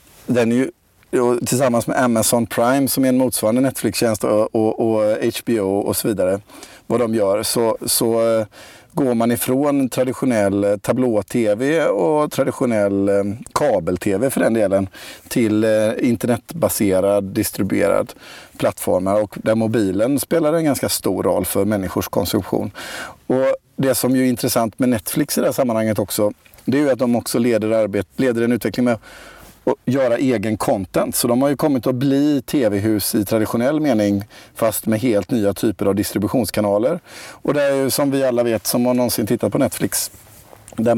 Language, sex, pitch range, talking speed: Swedish, male, 105-125 Hz, 155 wpm